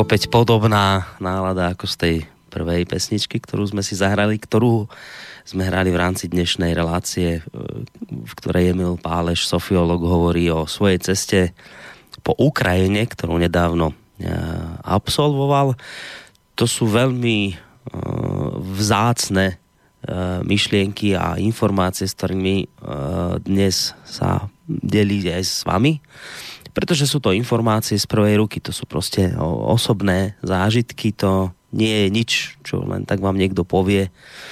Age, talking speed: 20-39, 120 wpm